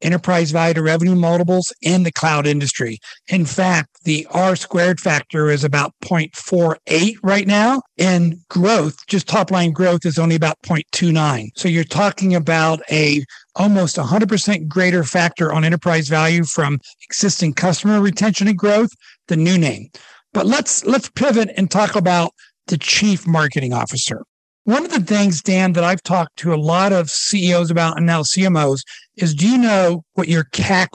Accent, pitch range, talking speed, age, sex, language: American, 155-190 Hz, 165 wpm, 60-79, male, English